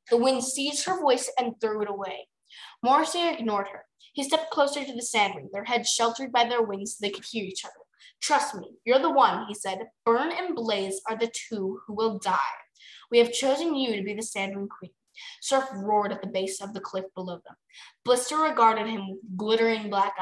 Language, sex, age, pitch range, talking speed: English, female, 10-29, 200-260 Hz, 210 wpm